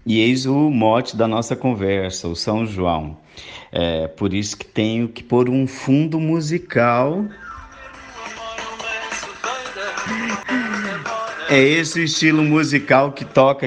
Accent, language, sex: Brazilian, Portuguese, male